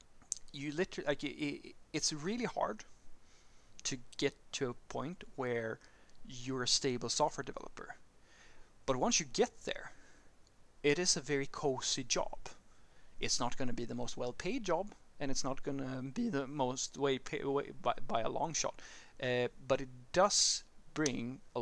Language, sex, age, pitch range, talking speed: English, male, 30-49, 120-145 Hz, 170 wpm